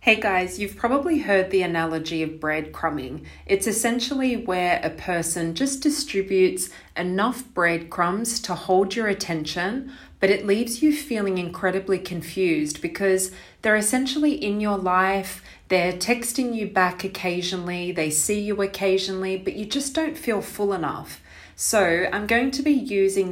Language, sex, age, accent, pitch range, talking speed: English, female, 30-49, Australian, 180-215 Hz, 145 wpm